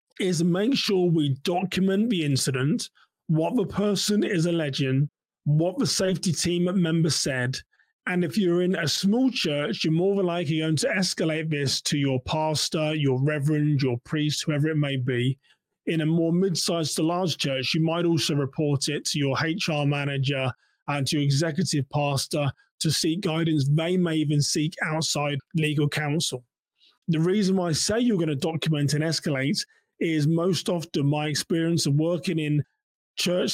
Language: English